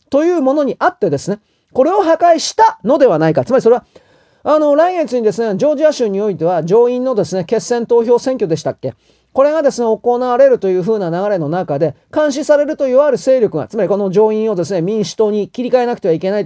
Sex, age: male, 40-59